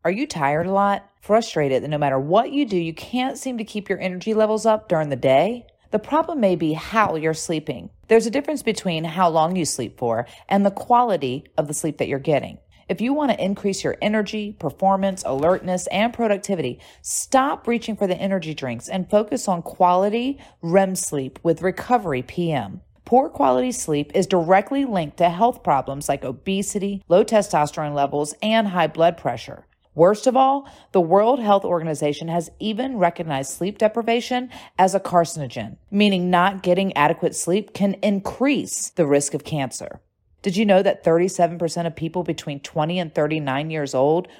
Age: 40-59